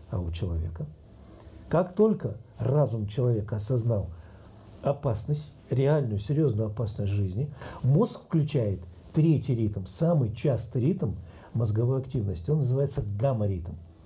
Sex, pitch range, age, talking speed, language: male, 105-150 Hz, 50-69, 105 wpm, Russian